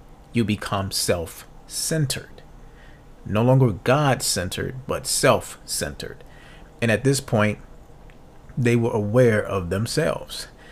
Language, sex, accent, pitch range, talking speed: English, male, American, 100-130 Hz, 95 wpm